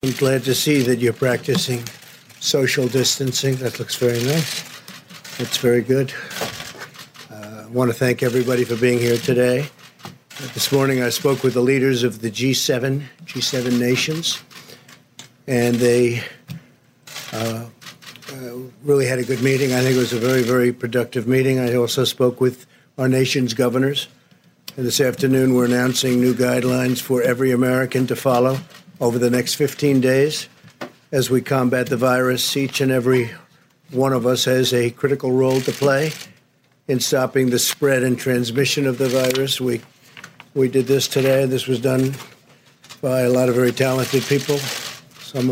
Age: 50-69